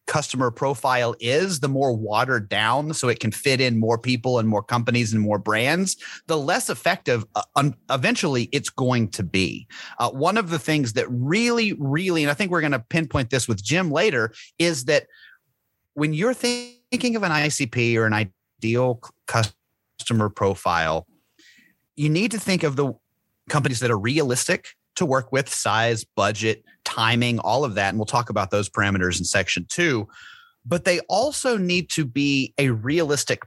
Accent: American